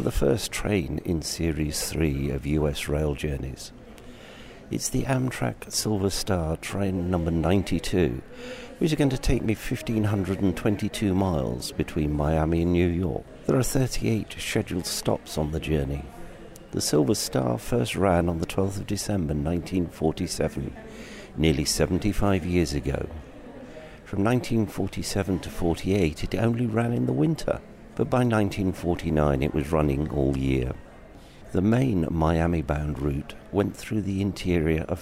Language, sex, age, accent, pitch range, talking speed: English, male, 60-79, British, 75-105 Hz, 140 wpm